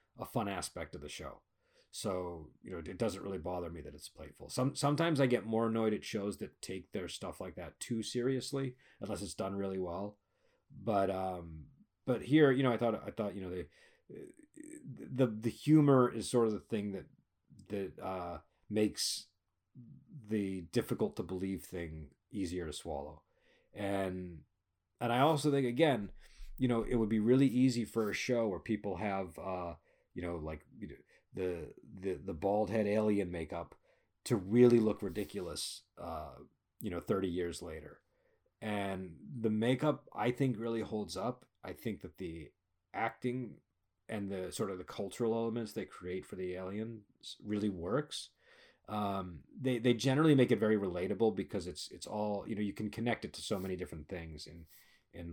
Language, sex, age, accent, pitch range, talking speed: English, male, 40-59, American, 90-115 Hz, 180 wpm